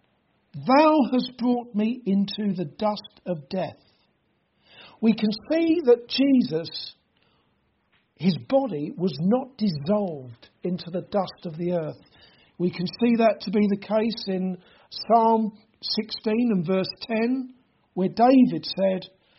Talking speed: 130 wpm